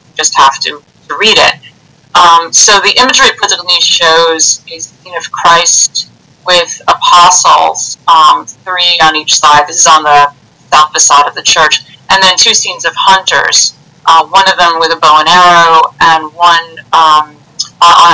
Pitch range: 155-190 Hz